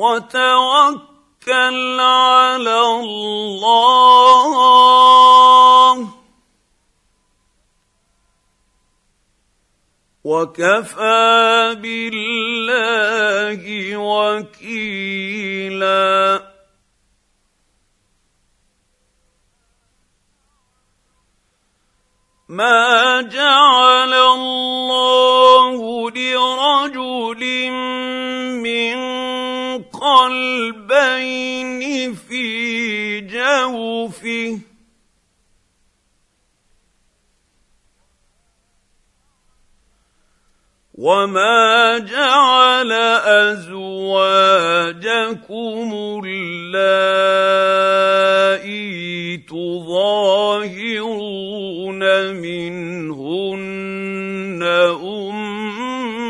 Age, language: 50-69, English